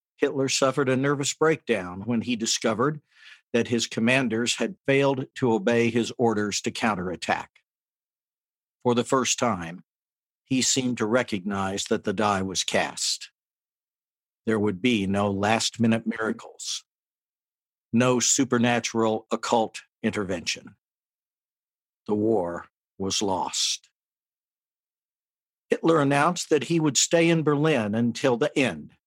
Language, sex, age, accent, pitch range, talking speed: English, male, 60-79, American, 115-150 Hz, 120 wpm